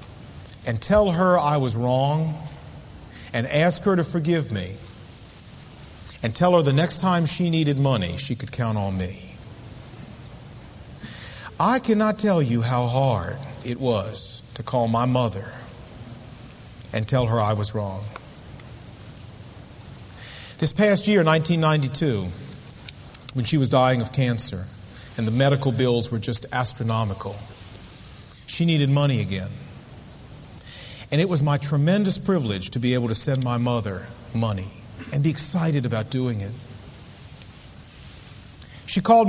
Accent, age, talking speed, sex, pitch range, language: American, 40-59, 135 wpm, male, 110-145 Hz, English